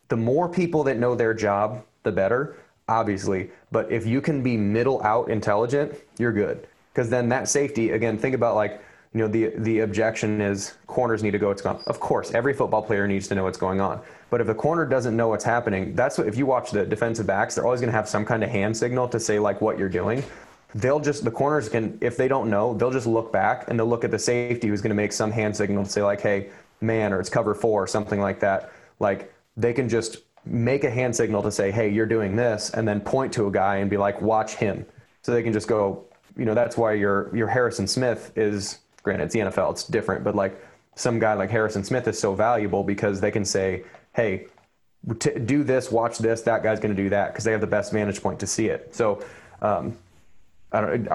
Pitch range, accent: 100-120 Hz, American